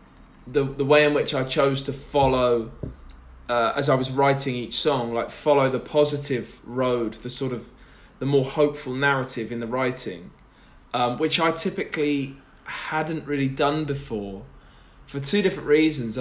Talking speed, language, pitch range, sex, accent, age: 160 wpm, English, 120-150 Hz, male, British, 20-39